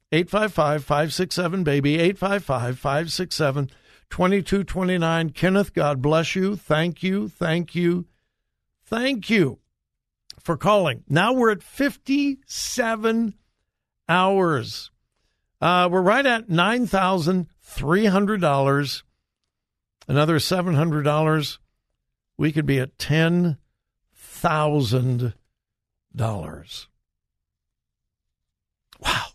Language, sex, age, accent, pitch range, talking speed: English, male, 60-79, American, 135-185 Hz, 65 wpm